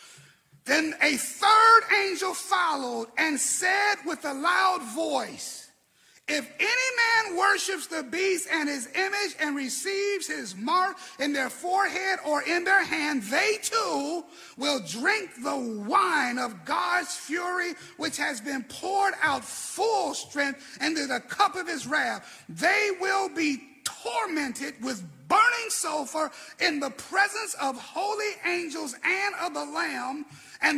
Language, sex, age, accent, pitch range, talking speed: English, male, 30-49, American, 280-375 Hz, 140 wpm